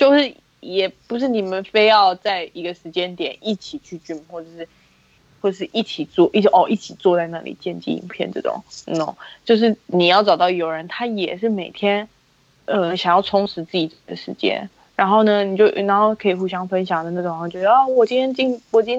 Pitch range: 175-215 Hz